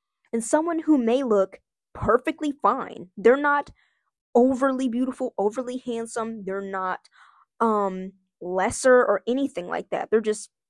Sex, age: female, 20-39